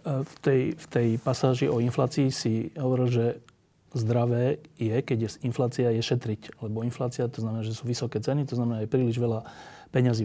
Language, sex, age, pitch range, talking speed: Slovak, male, 30-49, 115-135 Hz, 180 wpm